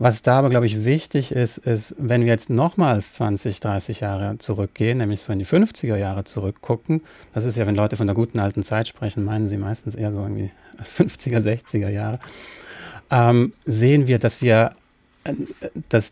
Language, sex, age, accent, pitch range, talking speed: German, male, 30-49, German, 105-120 Hz, 180 wpm